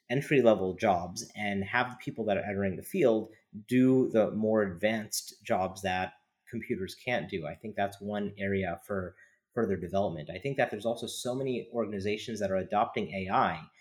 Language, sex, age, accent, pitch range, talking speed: English, male, 30-49, American, 95-115 Hz, 175 wpm